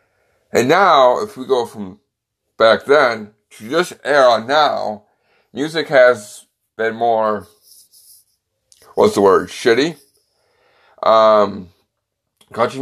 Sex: male